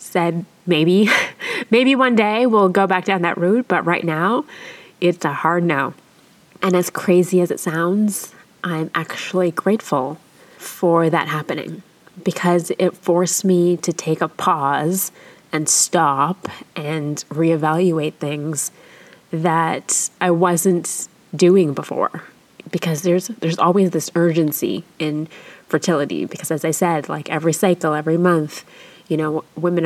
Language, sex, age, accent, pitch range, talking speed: English, female, 20-39, American, 160-185 Hz, 135 wpm